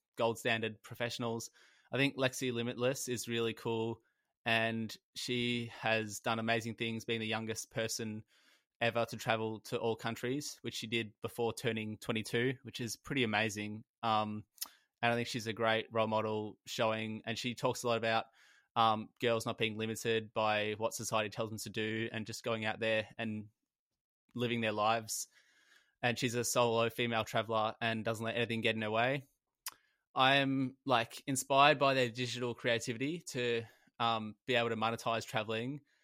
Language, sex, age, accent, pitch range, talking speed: English, male, 20-39, Australian, 110-120 Hz, 170 wpm